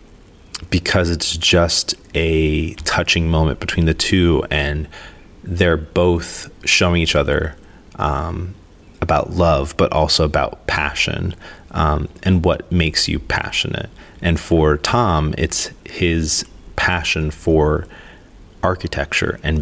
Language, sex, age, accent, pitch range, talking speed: English, male, 30-49, American, 80-95 Hz, 115 wpm